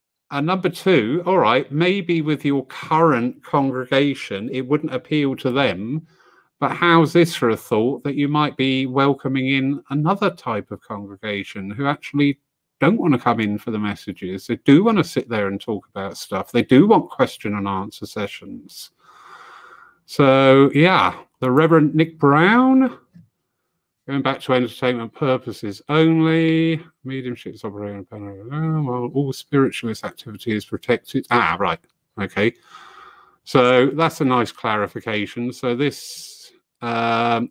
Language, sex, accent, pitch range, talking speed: English, male, British, 105-145 Hz, 145 wpm